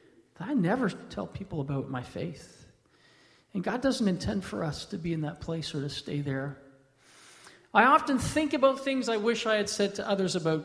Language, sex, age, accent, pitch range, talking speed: English, male, 40-59, American, 165-230 Hz, 195 wpm